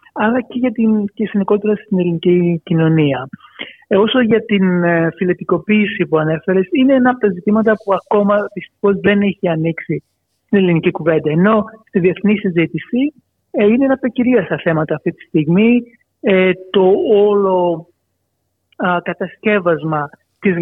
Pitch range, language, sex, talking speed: 165-205 Hz, Greek, male, 145 wpm